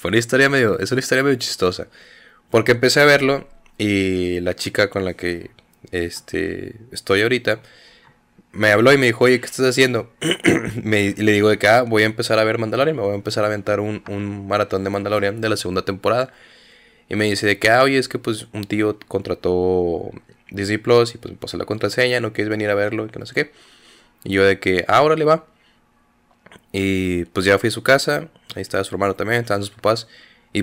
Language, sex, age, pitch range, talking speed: Spanish, male, 20-39, 95-115 Hz, 220 wpm